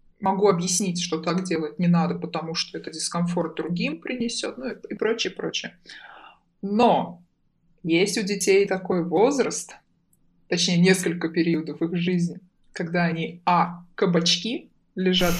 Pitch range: 170-210 Hz